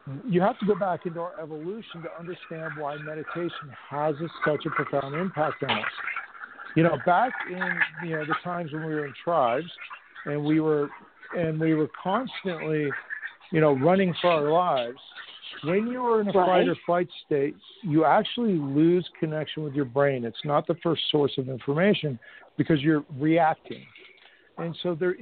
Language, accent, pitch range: English, American, 150-185 Hz